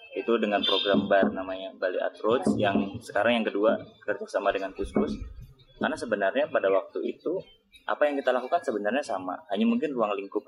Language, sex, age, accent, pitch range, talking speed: Indonesian, male, 20-39, native, 95-130 Hz, 170 wpm